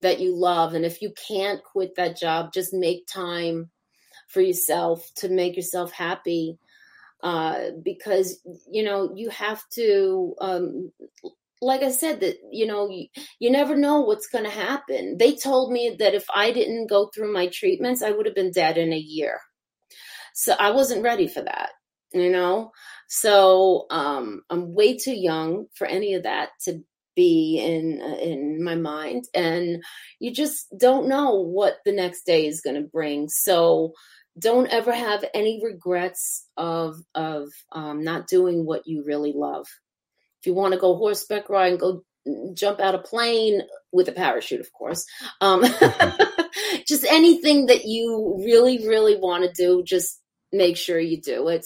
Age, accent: 30-49, American